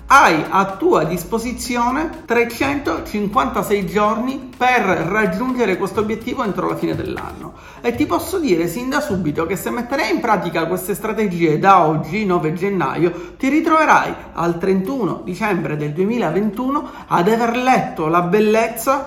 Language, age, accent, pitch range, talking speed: Italian, 40-59, native, 180-255 Hz, 140 wpm